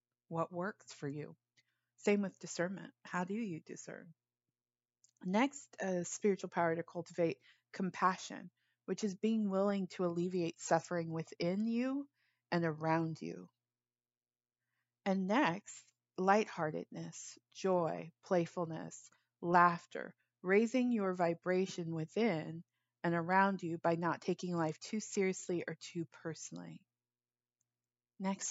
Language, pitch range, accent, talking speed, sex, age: English, 150-185 Hz, American, 110 wpm, female, 30-49